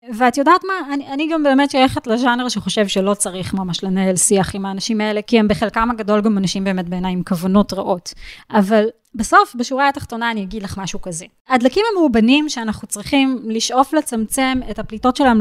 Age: 20-39